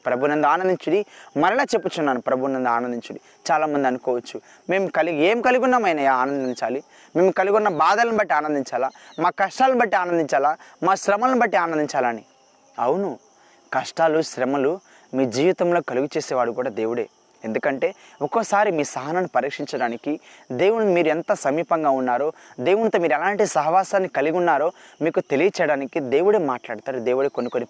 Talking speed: 130 wpm